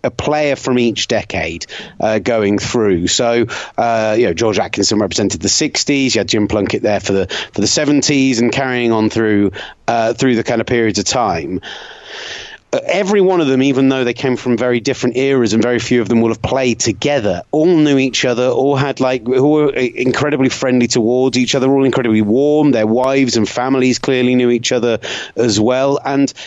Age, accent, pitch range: 30-49, British, 120-150 Hz